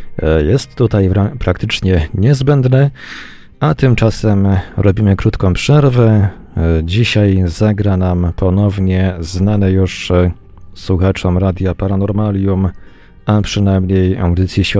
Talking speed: 90 wpm